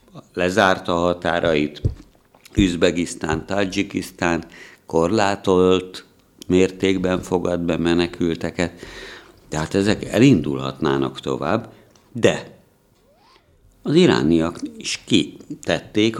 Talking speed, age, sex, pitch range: 65 wpm, 60-79, male, 80-105 Hz